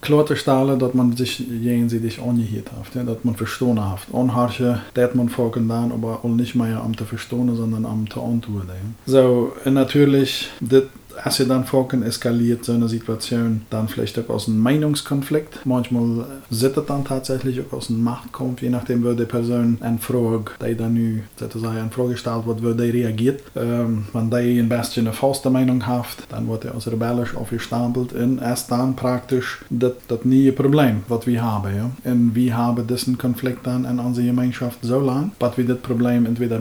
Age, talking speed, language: 20-39, 155 wpm, English